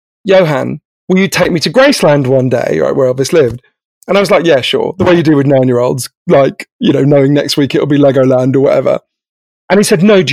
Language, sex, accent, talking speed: English, male, British, 240 wpm